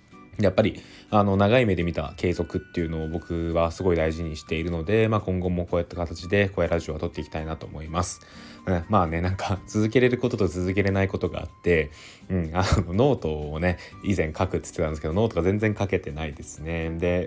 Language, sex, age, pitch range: Japanese, male, 20-39, 85-100 Hz